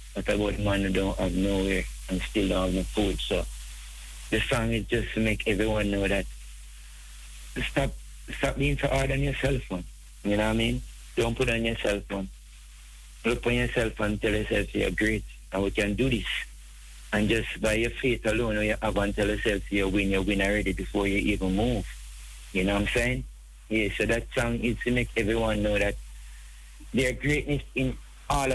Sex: male